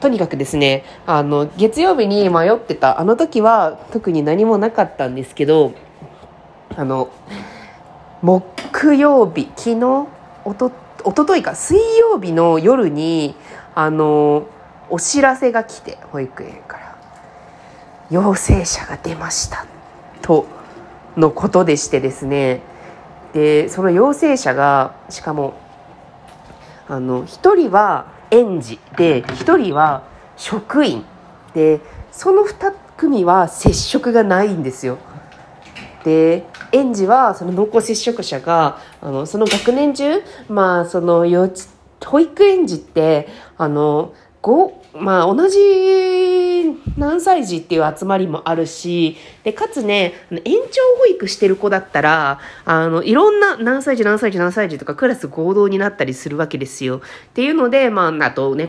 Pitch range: 155-245 Hz